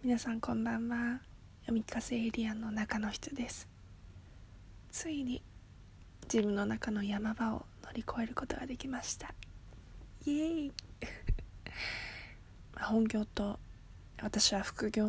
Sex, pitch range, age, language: female, 190-230 Hz, 20-39, Japanese